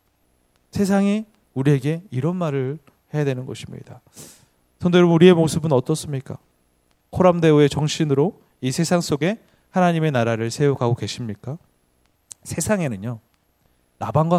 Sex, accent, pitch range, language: male, native, 120-180 Hz, Korean